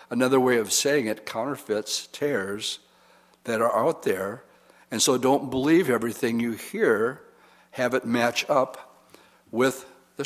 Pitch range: 110-135 Hz